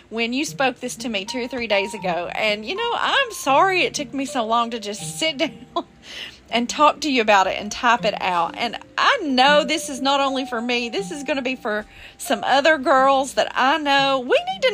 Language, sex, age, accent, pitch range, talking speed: English, female, 40-59, American, 235-345 Hz, 240 wpm